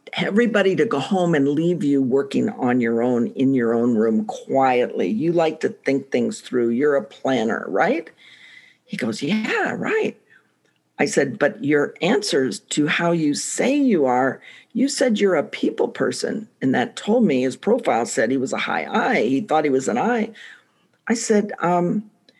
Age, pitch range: 50-69, 145-225 Hz